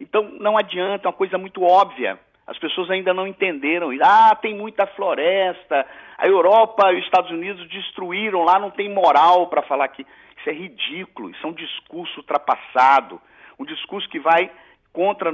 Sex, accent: male, Brazilian